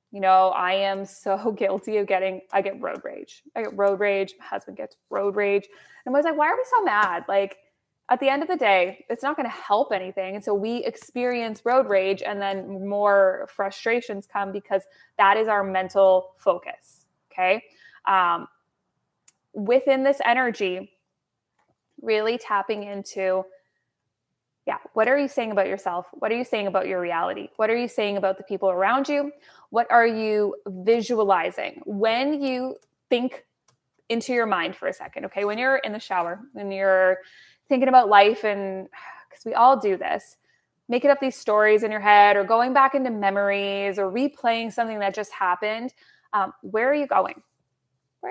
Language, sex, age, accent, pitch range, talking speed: English, female, 20-39, American, 195-255 Hz, 180 wpm